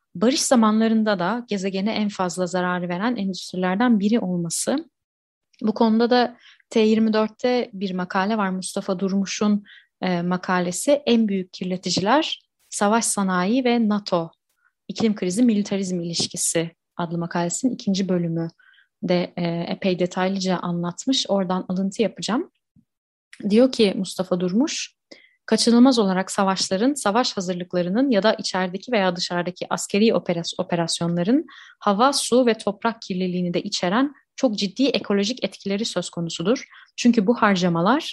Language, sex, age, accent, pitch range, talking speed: Turkish, female, 30-49, native, 185-235 Hz, 120 wpm